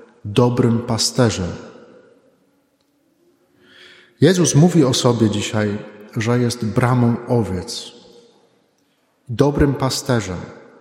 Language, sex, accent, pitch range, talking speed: Polish, male, native, 115-145 Hz, 70 wpm